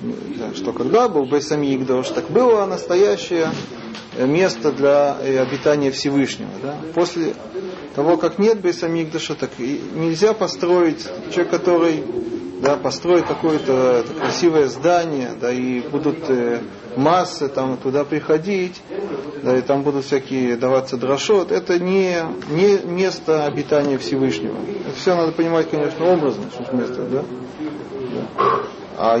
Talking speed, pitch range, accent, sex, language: 115 wpm, 140-180 Hz, native, male, Russian